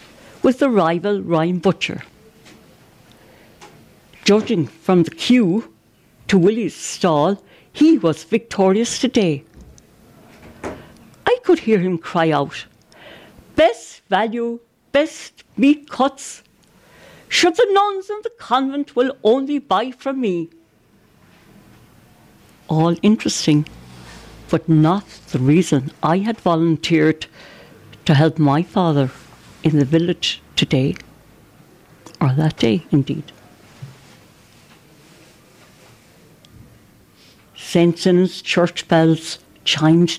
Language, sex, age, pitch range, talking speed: English, female, 60-79, 160-245 Hz, 95 wpm